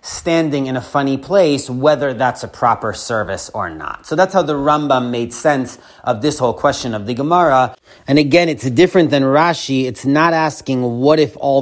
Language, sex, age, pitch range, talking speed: English, male, 30-49, 125-150 Hz, 195 wpm